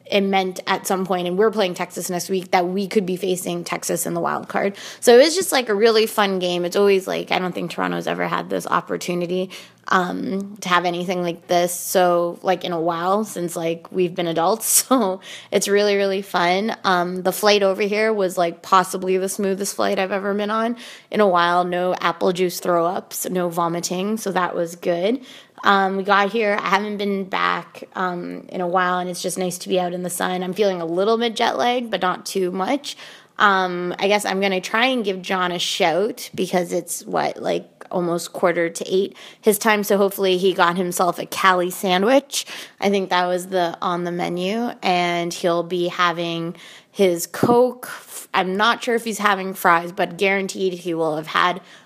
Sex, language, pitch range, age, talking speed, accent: female, English, 175-200 Hz, 20-39, 210 wpm, American